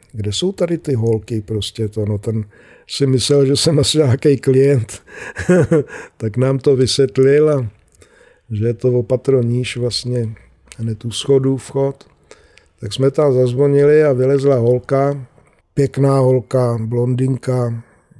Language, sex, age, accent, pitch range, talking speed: Czech, male, 50-69, native, 110-135 Hz, 135 wpm